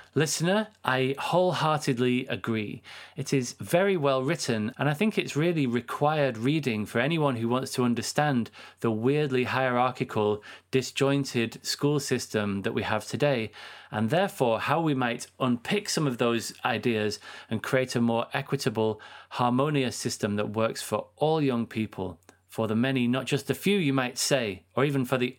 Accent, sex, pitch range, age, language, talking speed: British, male, 115-145 Hz, 30-49, English, 165 wpm